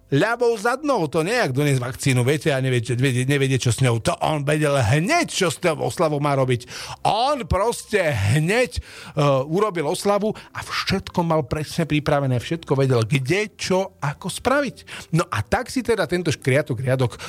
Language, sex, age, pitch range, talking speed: Slovak, male, 40-59, 125-165 Hz, 165 wpm